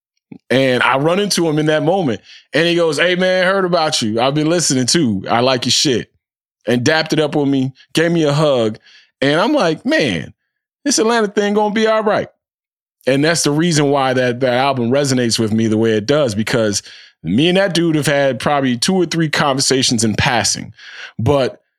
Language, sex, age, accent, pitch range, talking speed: English, male, 20-39, American, 105-140 Hz, 210 wpm